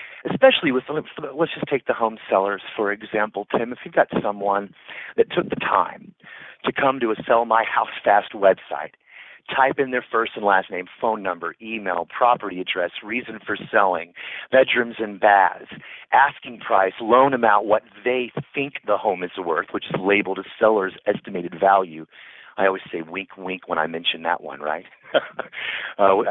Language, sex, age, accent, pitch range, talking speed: English, male, 40-59, American, 105-135 Hz, 175 wpm